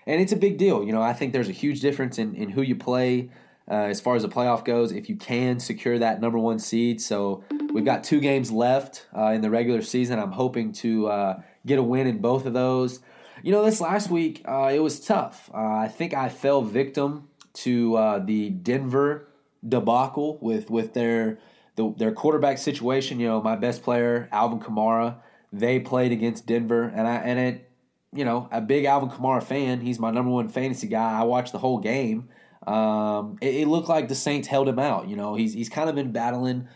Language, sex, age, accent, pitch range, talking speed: English, male, 20-39, American, 115-135 Hz, 215 wpm